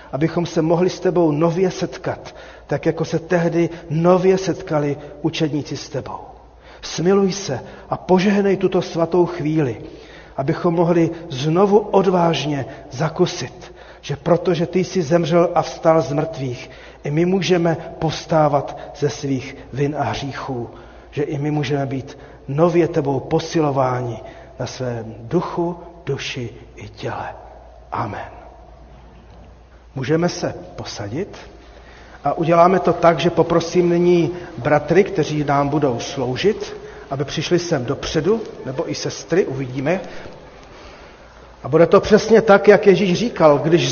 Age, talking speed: 40-59, 125 wpm